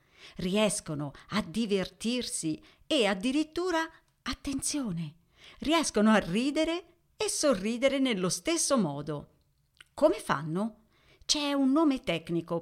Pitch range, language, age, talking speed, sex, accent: 170-240 Hz, Italian, 50-69, 95 wpm, female, native